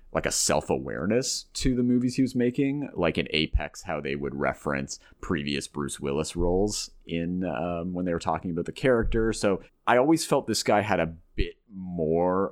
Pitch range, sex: 70-110 Hz, male